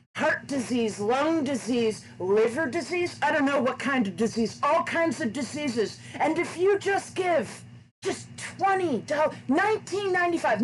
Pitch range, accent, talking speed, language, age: 225-320 Hz, American, 140 wpm, English, 30-49